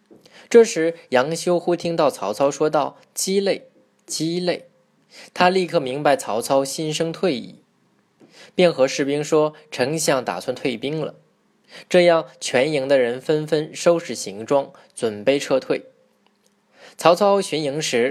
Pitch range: 130-170 Hz